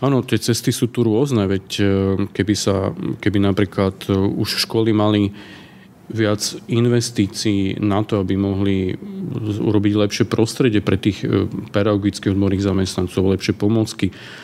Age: 40-59